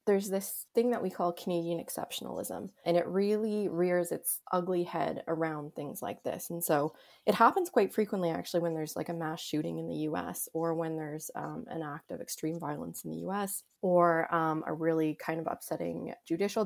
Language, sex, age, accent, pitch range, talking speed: English, female, 20-39, American, 165-190 Hz, 200 wpm